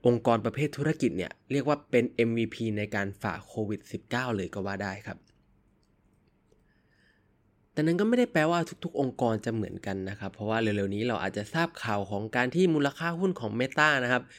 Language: Thai